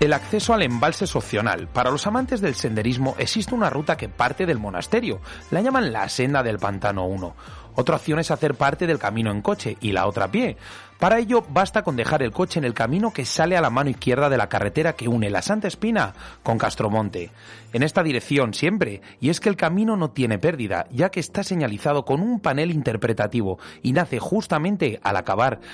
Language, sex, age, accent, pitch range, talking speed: Spanish, male, 30-49, Spanish, 110-170 Hz, 205 wpm